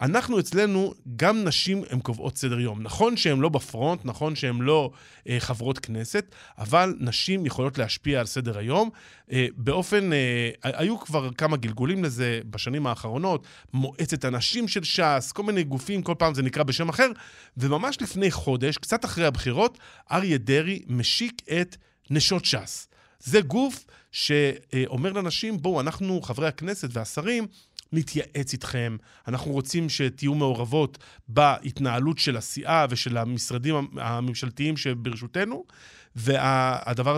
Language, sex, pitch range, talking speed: Hebrew, male, 125-170 Hz, 135 wpm